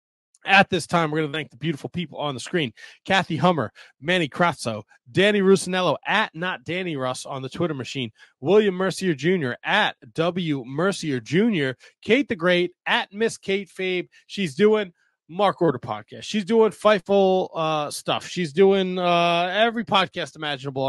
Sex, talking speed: male, 160 wpm